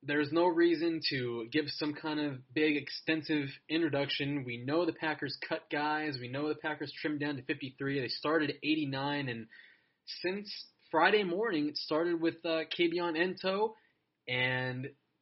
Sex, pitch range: male, 130-160 Hz